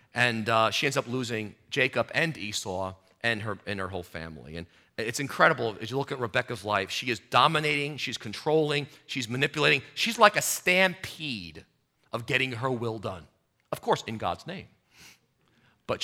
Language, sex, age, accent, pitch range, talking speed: English, male, 40-59, American, 110-160 Hz, 170 wpm